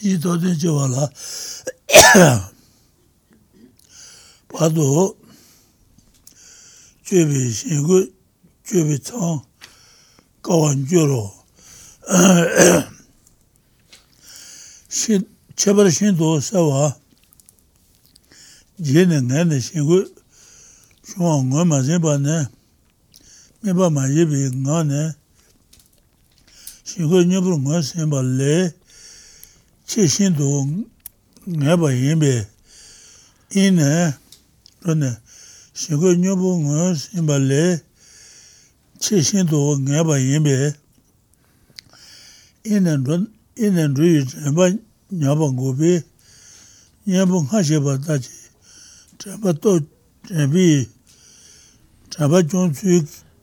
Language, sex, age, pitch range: English, male, 60-79, 135-180 Hz